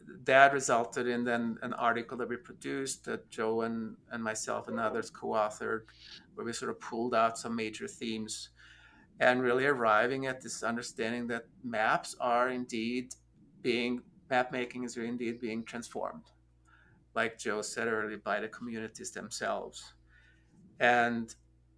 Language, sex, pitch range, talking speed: English, male, 105-125 Hz, 145 wpm